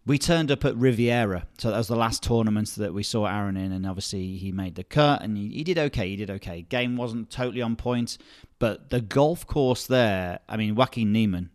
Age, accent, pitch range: 30-49, British, 100-130 Hz